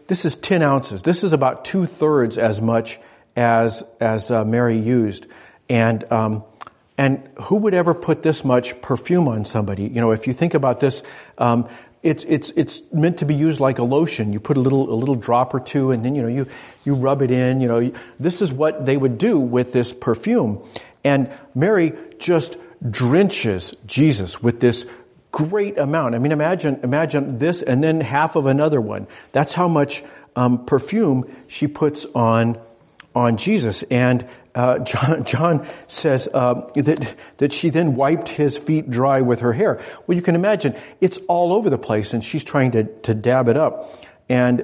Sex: male